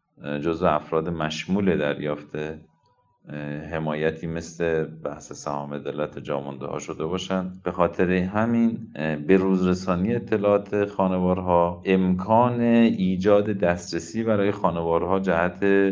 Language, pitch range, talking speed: Persian, 80-95 Hz, 100 wpm